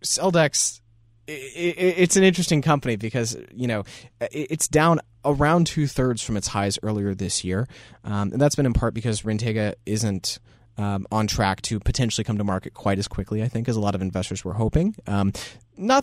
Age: 20-39